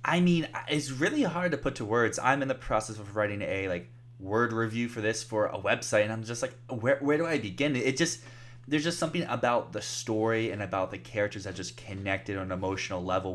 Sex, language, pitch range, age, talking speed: male, English, 100-125 Hz, 20-39, 235 wpm